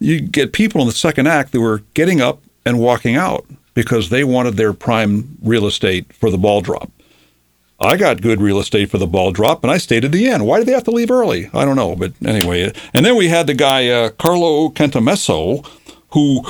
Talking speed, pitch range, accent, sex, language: 225 wpm, 95-120 Hz, American, male, English